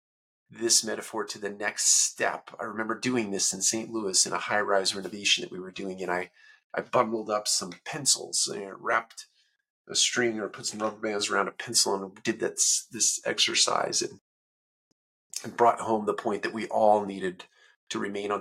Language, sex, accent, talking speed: English, male, American, 190 wpm